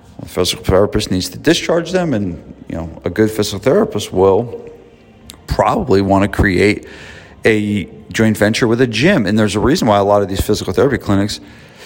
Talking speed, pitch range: 195 wpm, 95-110 Hz